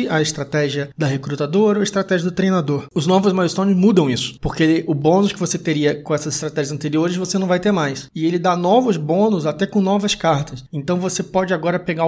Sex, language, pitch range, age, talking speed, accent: male, Portuguese, 155-190 Hz, 20-39, 215 wpm, Brazilian